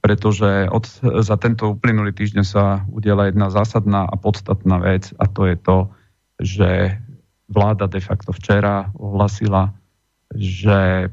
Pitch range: 100-115 Hz